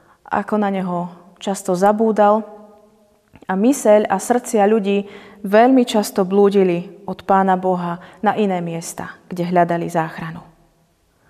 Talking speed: 115 wpm